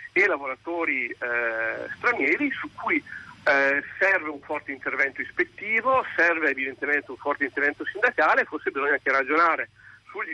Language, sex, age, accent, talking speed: Italian, male, 50-69, native, 135 wpm